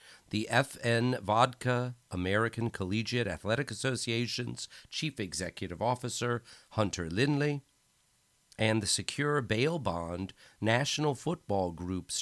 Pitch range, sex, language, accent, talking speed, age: 100-125 Hz, male, English, American, 100 wpm, 50-69